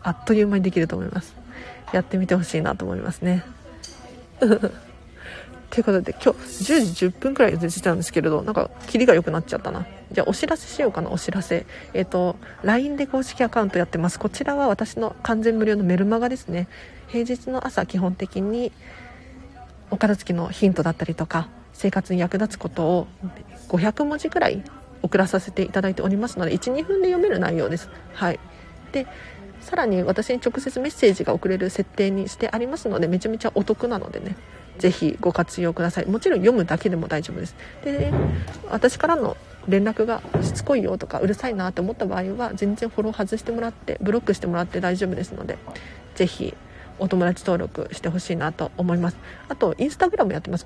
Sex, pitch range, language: female, 180-235 Hz, Japanese